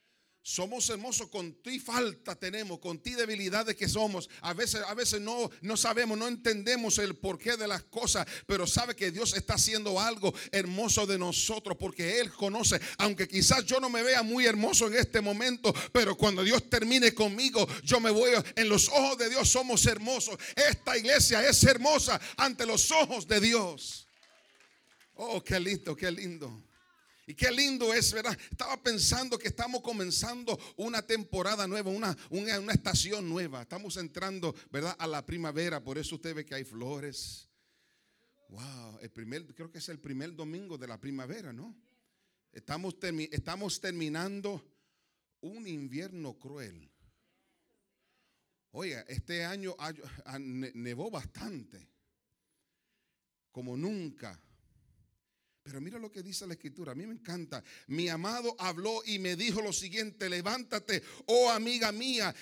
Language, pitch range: Spanish, 170-230 Hz